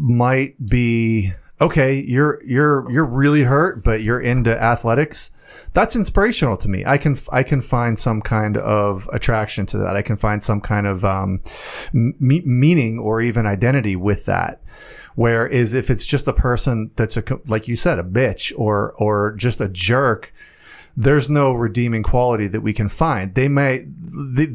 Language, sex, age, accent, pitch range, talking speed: English, male, 30-49, American, 110-135 Hz, 165 wpm